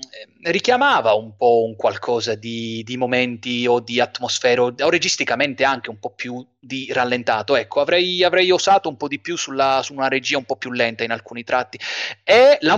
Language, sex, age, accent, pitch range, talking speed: Italian, male, 30-49, native, 120-165 Hz, 180 wpm